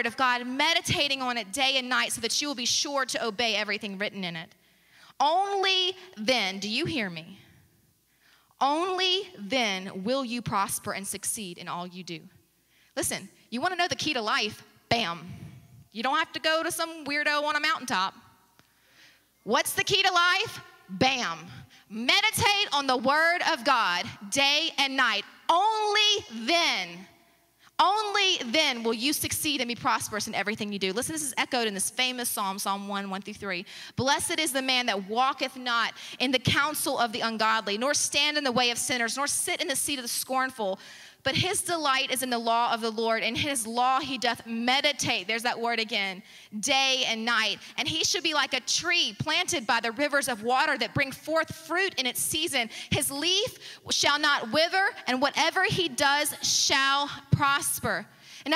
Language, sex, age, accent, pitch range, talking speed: English, female, 20-39, American, 225-315 Hz, 190 wpm